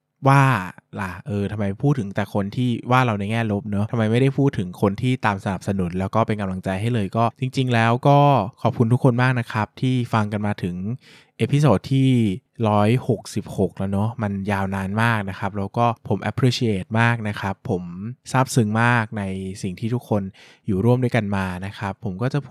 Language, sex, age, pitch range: Thai, male, 20-39, 100-125 Hz